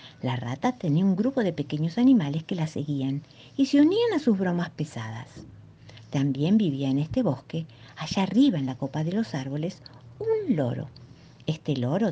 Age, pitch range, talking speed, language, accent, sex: 50-69, 135-200 Hz, 175 wpm, Spanish, American, female